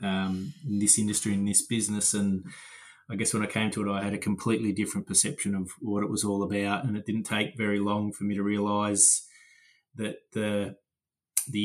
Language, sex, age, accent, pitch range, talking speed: English, male, 20-39, Australian, 95-105 Hz, 205 wpm